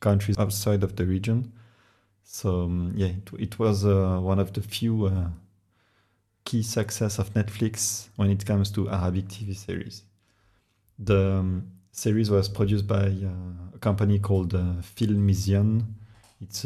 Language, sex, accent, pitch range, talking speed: English, male, French, 95-105 Hz, 145 wpm